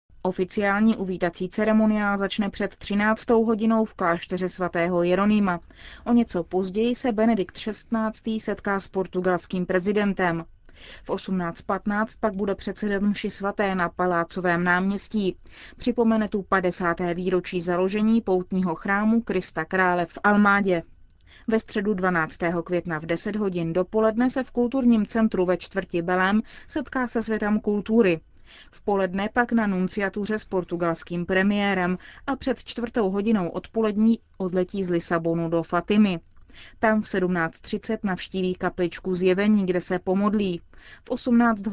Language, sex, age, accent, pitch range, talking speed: Czech, female, 20-39, native, 180-215 Hz, 130 wpm